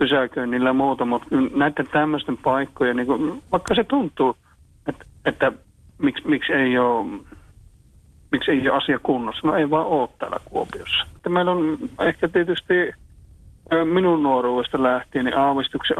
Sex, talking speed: male, 145 wpm